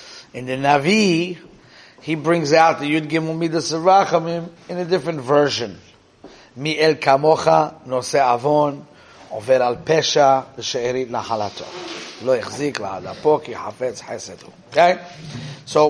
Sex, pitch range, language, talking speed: male, 130-165 Hz, English, 105 wpm